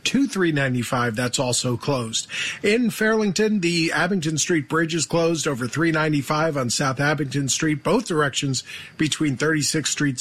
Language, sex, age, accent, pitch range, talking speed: English, male, 40-59, American, 135-180 Hz, 140 wpm